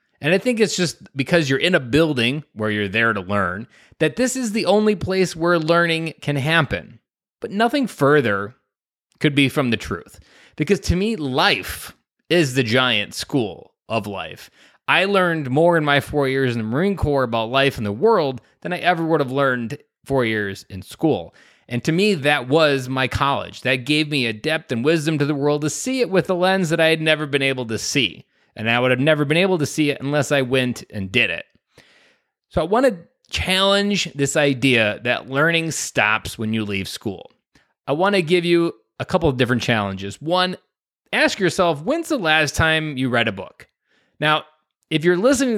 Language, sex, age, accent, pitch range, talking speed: English, male, 20-39, American, 125-175 Hz, 205 wpm